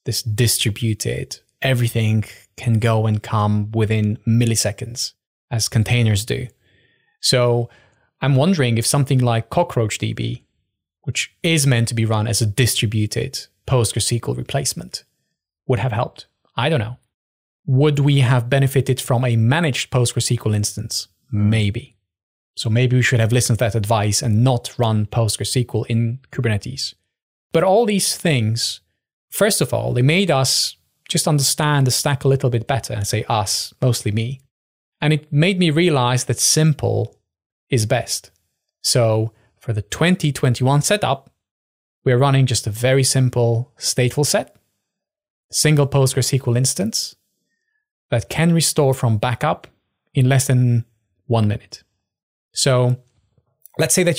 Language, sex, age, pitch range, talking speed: English, male, 20-39, 110-135 Hz, 135 wpm